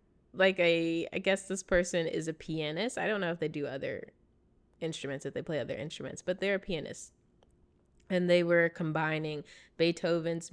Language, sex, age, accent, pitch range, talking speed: English, female, 20-39, American, 160-205 Hz, 175 wpm